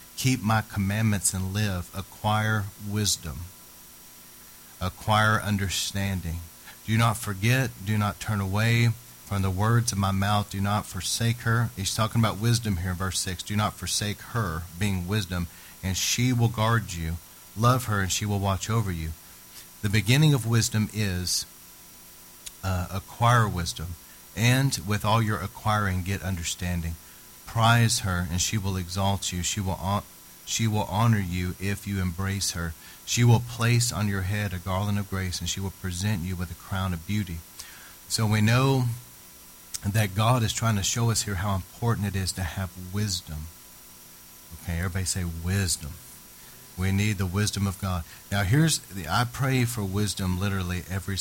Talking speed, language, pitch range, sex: 165 wpm, English, 90-110 Hz, male